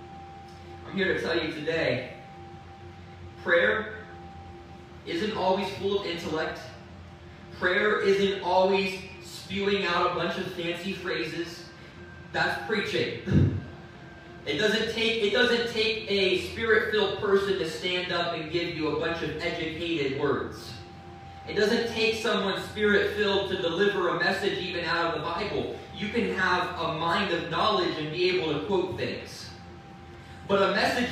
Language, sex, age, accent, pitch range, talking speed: English, male, 20-39, American, 150-200 Hz, 140 wpm